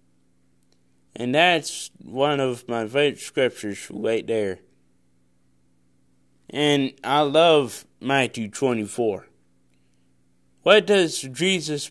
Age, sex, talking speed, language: 20-39, male, 90 wpm, English